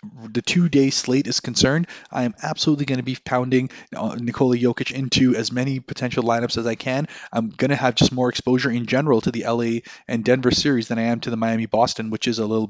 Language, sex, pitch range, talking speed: English, male, 120-140 Hz, 225 wpm